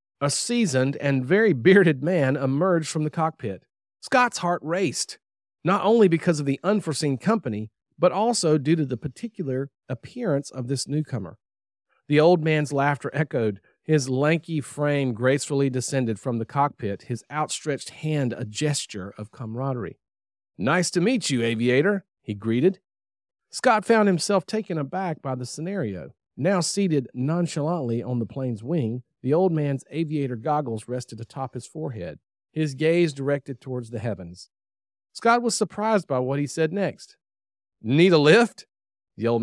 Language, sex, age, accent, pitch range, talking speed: English, male, 40-59, American, 120-170 Hz, 150 wpm